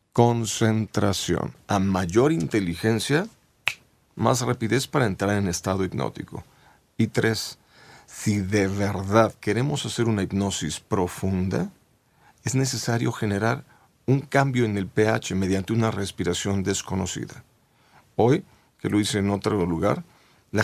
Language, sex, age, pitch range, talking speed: Spanish, male, 50-69, 95-125 Hz, 120 wpm